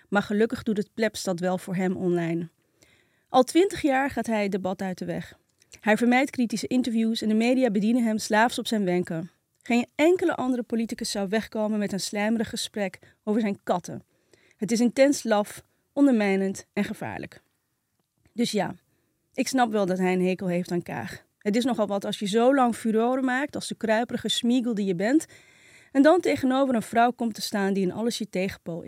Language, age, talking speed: Dutch, 30-49, 195 wpm